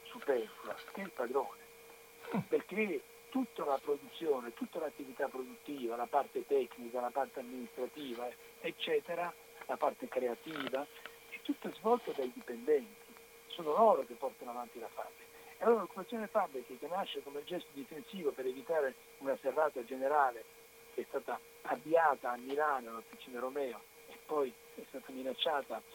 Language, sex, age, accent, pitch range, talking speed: Italian, male, 60-79, native, 145-235 Hz, 140 wpm